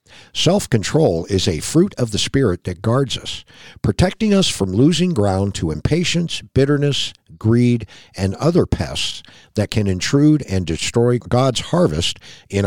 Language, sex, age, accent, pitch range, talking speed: English, male, 50-69, American, 95-135 Hz, 140 wpm